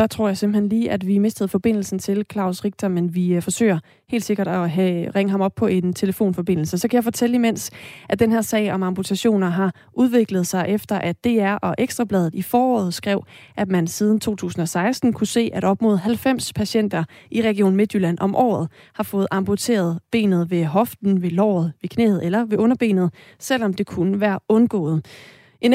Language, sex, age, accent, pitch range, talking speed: Danish, female, 30-49, native, 185-220 Hz, 190 wpm